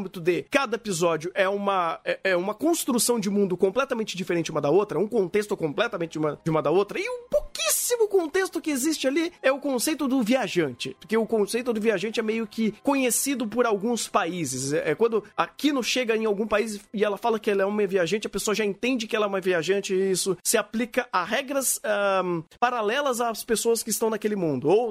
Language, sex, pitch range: Portuguese, male, 175-240 Hz